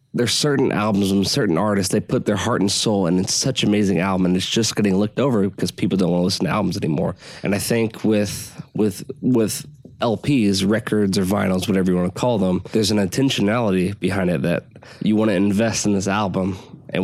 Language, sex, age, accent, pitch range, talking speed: English, male, 20-39, American, 95-115 Hz, 220 wpm